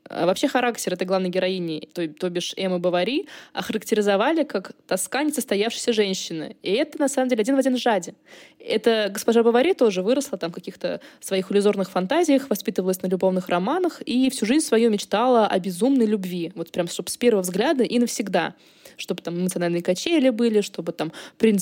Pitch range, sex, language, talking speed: 185-245 Hz, female, Russian, 180 wpm